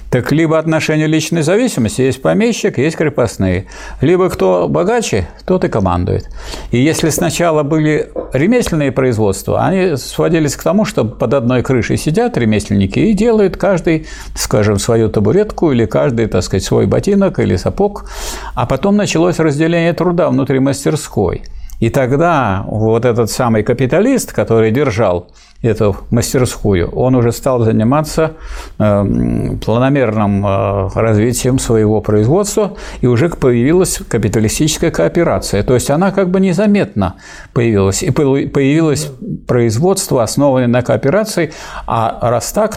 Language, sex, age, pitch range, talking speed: Russian, male, 60-79, 115-170 Hz, 130 wpm